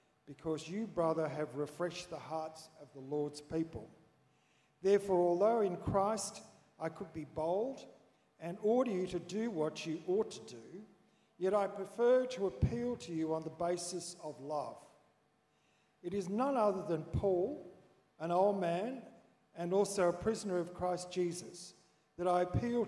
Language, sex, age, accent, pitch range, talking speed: English, male, 50-69, Australian, 150-195 Hz, 155 wpm